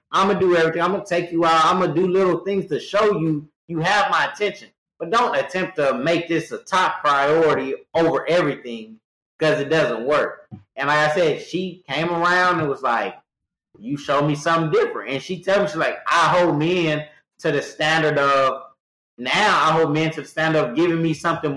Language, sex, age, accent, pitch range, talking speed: English, male, 30-49, American, 150-190 Hz, 215 wpm